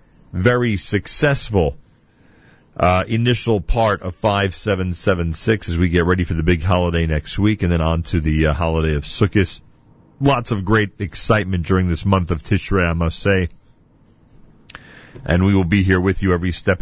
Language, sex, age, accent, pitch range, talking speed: English, male, 40-59, American, 90-120 Hz, 170 wpm